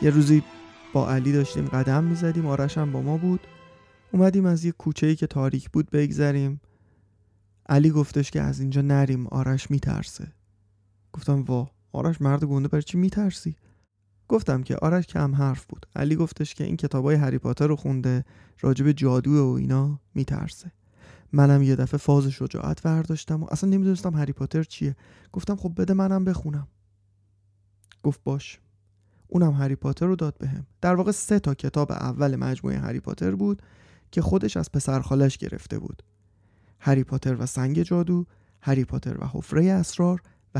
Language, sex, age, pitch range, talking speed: Persian, male, 30-49, 125-165 Hz, 160 wpm